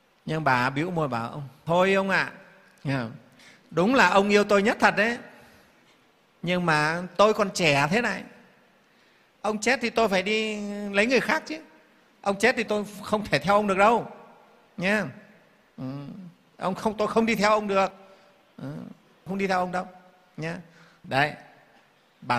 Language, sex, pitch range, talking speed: Vietnamese, male, 160-215 Hz, 160 wpm